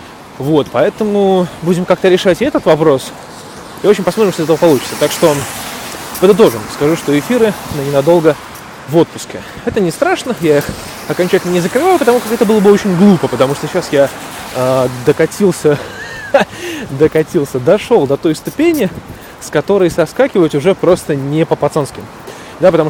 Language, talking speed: Russian, 150 wpm